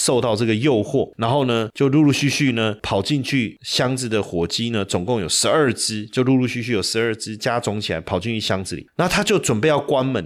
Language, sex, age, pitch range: Chinese, male, 30-49, 105-135 Hz